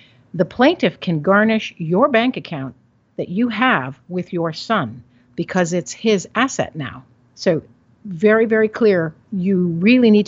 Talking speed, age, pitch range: 145 wpm, 50-69, 145-210 Hz